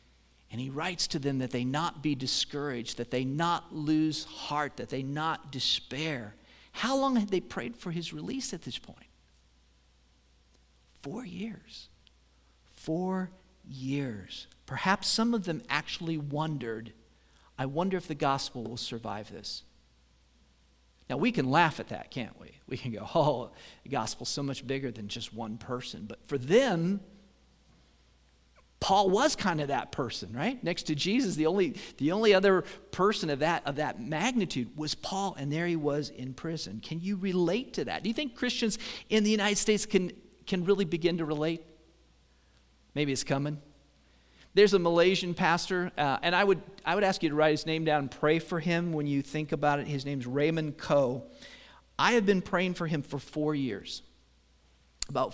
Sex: male